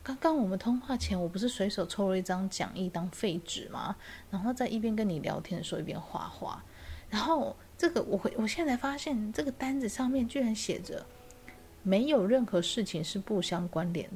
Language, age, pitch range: Chinese, 30-49, 180-235 Hz